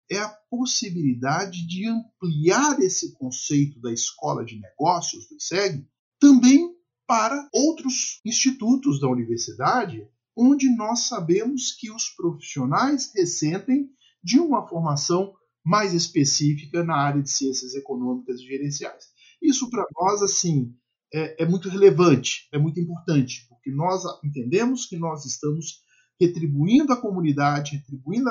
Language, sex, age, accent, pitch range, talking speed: Portuguese, male, 50-69, Brazilian, 130-190 Hz, 125 wpm